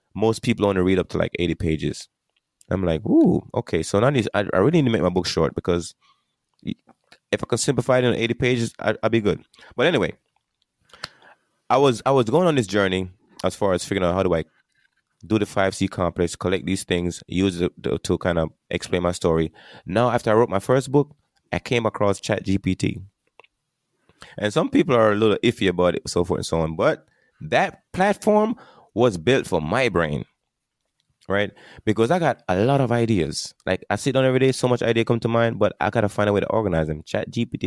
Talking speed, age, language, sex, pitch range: 210 wpm, 20-39, English, male, 90-115 Hz